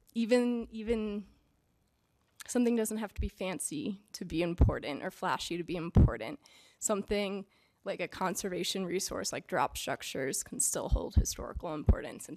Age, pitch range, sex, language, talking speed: 20-39, 190-220 Hz, female, English, 145 wpm